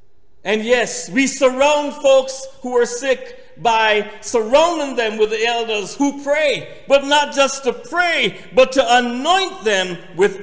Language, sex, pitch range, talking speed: English, male, 200-300 Hz, 150 wpm